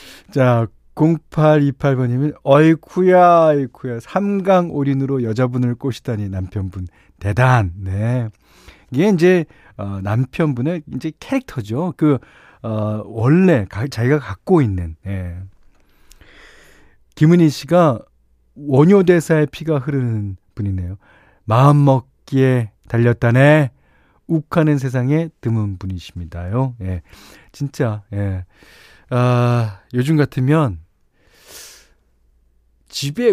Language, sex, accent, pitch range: Korean, male, native, 105-155 Hz